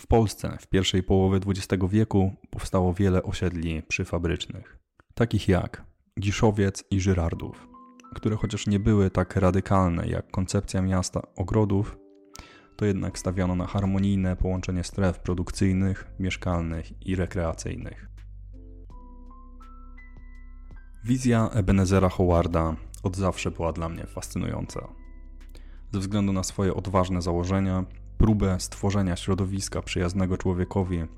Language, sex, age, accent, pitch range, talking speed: Polish, male, 20-39, native, 90-100 Hz, 110 wpm